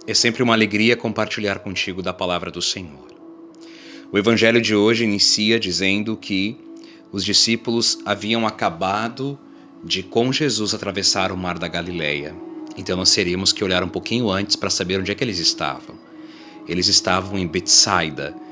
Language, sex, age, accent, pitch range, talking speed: Portuguese, male, 30-49, Brazilian, 100-135 Hz, 155 wpm